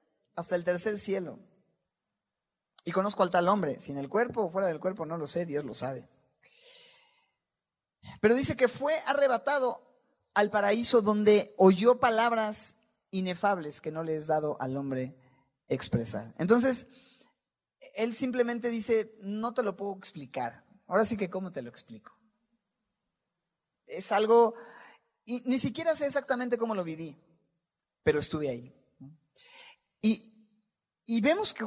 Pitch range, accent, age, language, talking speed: 160-240 Hz, Mexican, 30-49, Spanish, 140 wpm